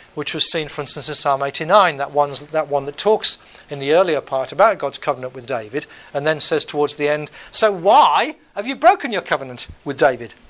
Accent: British